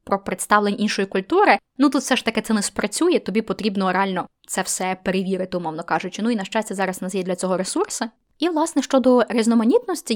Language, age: Ukrainian, 10-29